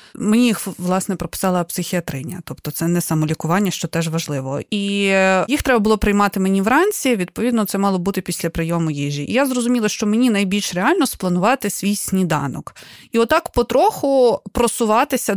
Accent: native